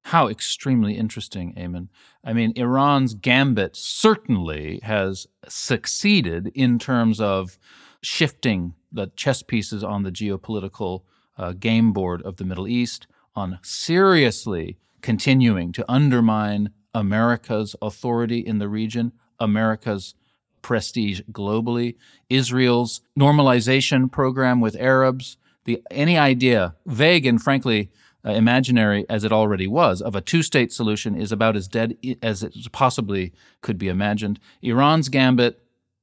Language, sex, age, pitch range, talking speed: English, male, 40-59, 105-135 Hz, 120 wpm